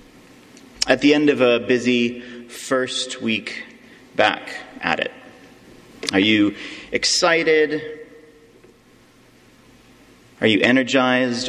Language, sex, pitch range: English, male, 120-165 Hz